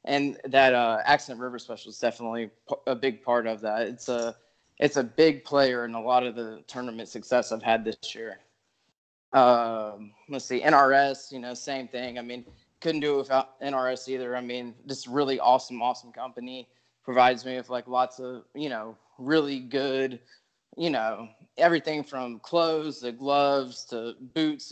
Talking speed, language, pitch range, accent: 175 wpm, English, 120-135 Hz, American